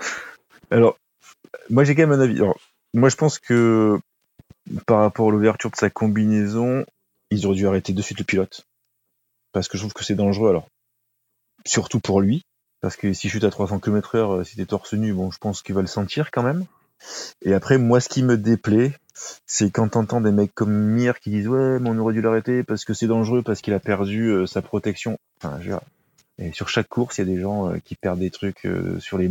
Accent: French